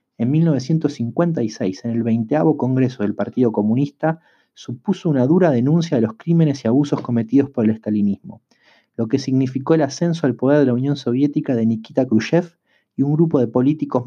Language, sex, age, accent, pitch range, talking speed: Spanish, male, 30-49, Argentinian, 120-160 Hz, 175 wpm